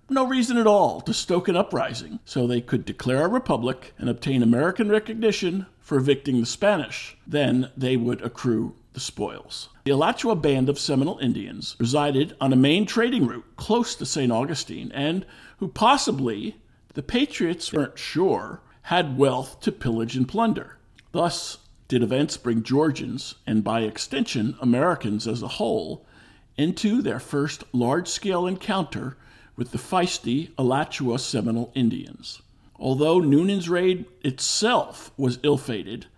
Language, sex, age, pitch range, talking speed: English, male, 50-69, 125-180 Hz, 145 wpm